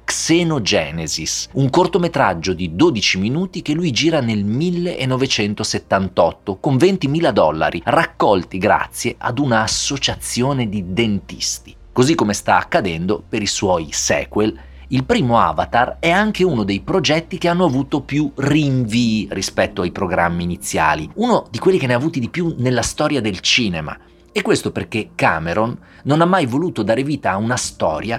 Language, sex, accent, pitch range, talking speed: Italian, male, native, 105-160 Hz, 155 wpm